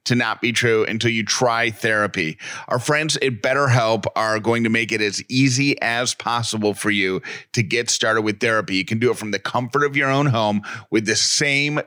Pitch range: 110-125 Hz